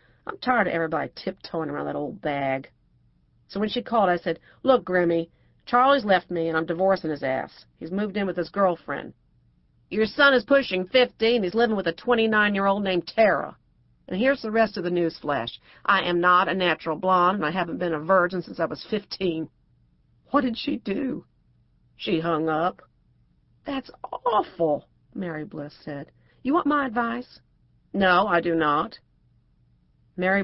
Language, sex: English, female